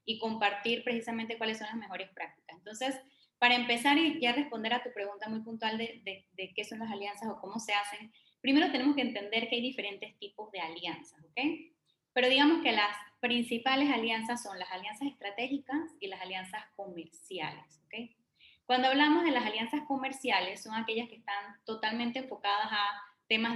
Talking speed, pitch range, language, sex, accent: 180 wpm, 200-245 Hz, Spanish, female, American